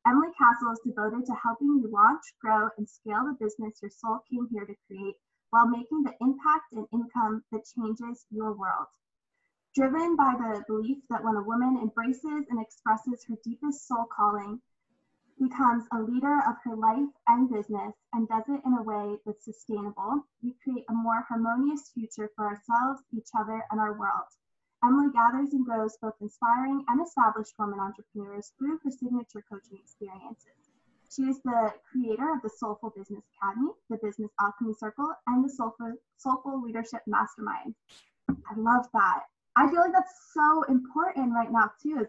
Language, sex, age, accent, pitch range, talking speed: English, female, 10-29, American, 220-270 Hz, 170 wpm